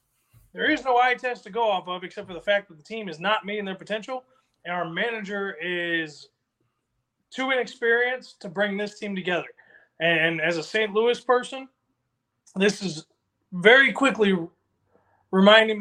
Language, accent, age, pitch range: English, American, 20-39, 160-205 Hz